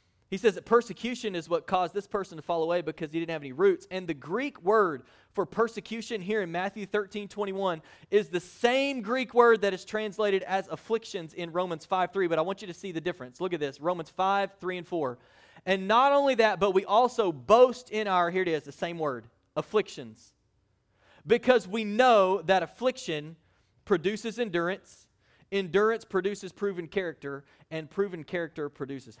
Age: 30-49